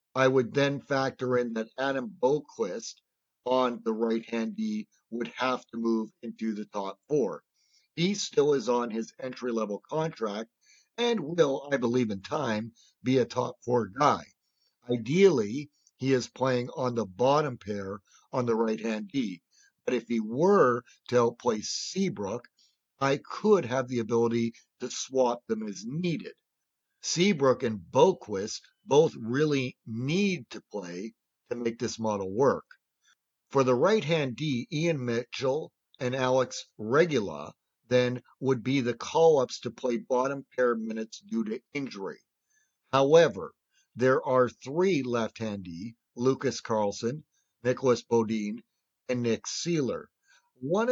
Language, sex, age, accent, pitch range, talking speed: English, male, 50-69, American, 115-155 Hz, 135 wpm